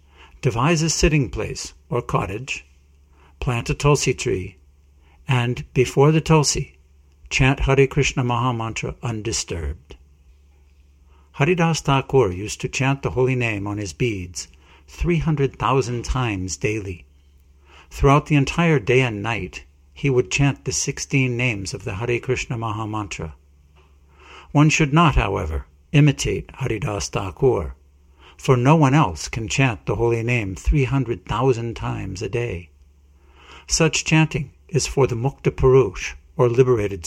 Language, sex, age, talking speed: English, male, 60-79, 130 wpm